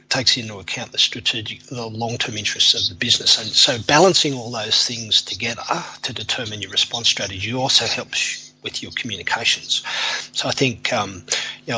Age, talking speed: 30-49, 175 wpm